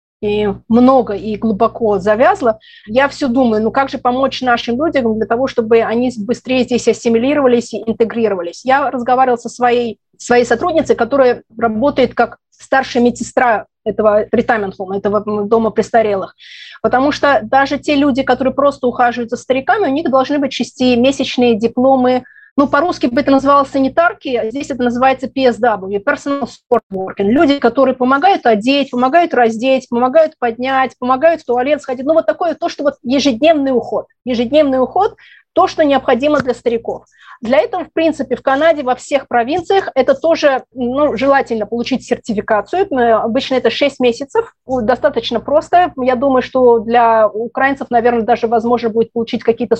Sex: female